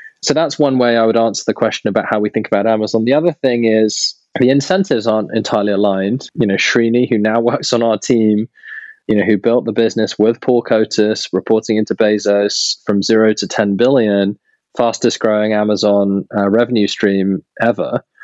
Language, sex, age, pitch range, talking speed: English, male, 20-39, 105-125 Hz, 190 wpm